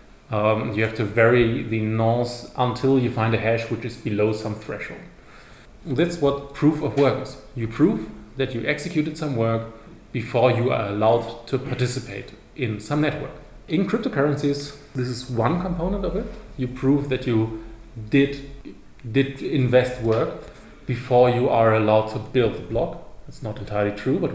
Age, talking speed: 30-49, 170 wpm